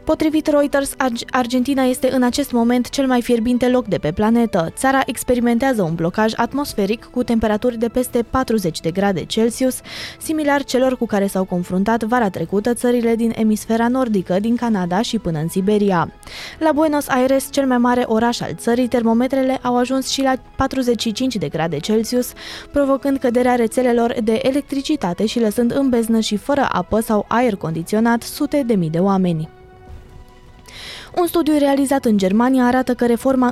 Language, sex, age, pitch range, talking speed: Romanian, female, 20-39, 205-255 Hz, 165 wpm